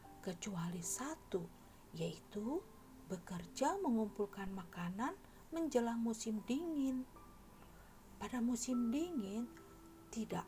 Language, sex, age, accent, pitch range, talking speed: Indonesian, female, 50-69, native, 200-270 Hz, 75 wpm